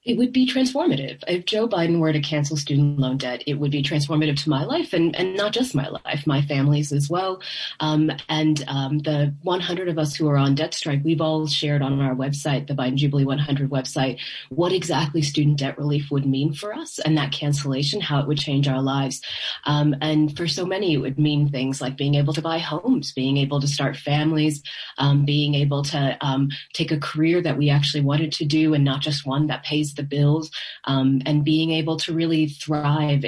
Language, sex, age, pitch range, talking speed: English, female, 30-49, 140-160 Hz, 215 wpm